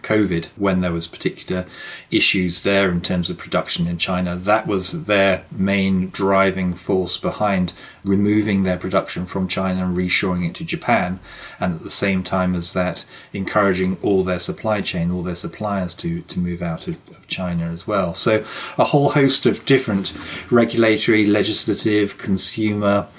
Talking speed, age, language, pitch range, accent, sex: 165 wpm, 30-49, English, 90-100 Hz, British, male